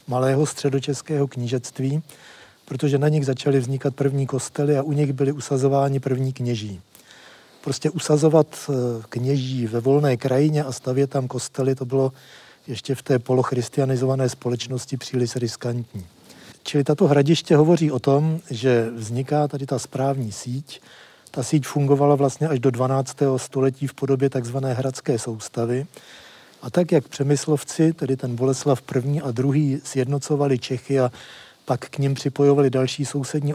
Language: Czech